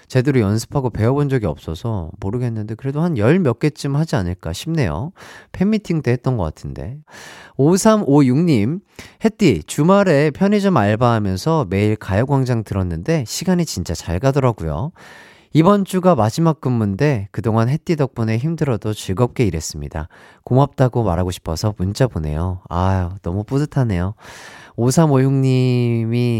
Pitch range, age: 95-145 Hz, 40-59